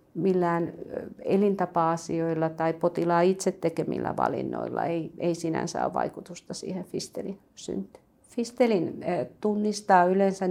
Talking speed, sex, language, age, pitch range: 105 wpm, female, Finnish, 50-69, 165-190 Hz